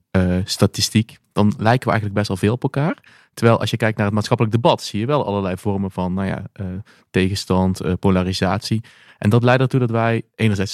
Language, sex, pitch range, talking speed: Dutch, male, 100-125 Hz, 210 wpm